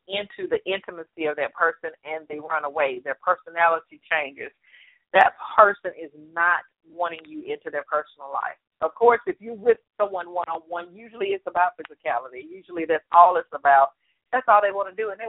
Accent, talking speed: American, 185 wpm